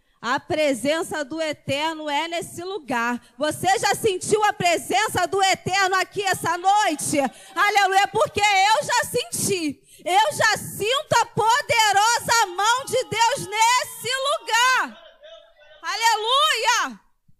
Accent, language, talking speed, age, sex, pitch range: Brazilian, Portuguese, 115 wpm, 20-39, female, 245-385 Hz